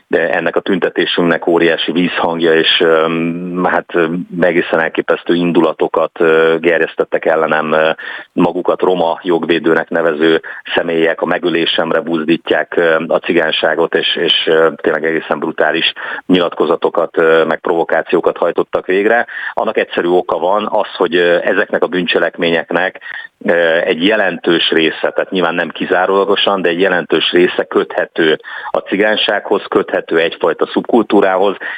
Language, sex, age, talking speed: Hungarian, male, 40-59, 110 wpm